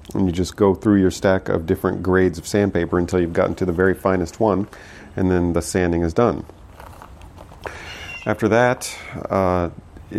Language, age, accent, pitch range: English, 40-59, American, 85-100 Hz